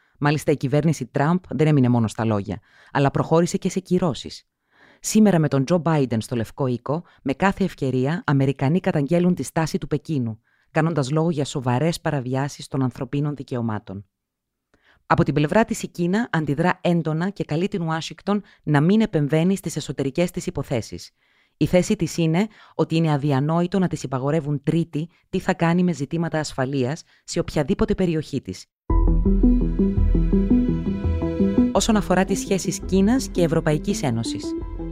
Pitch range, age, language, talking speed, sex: 135-180 Hz, 30-49, Greek, 150 wpm, female